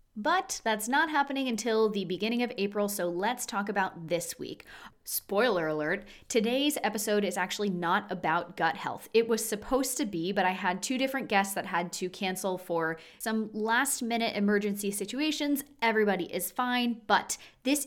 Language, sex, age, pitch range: English, female, 20-39, 180-230 Hz